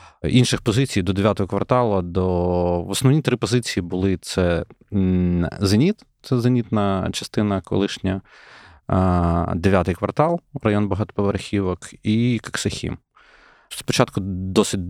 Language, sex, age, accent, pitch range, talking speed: Ukrainian, male, 30-49, native, 90-110 Hz, 95 wpm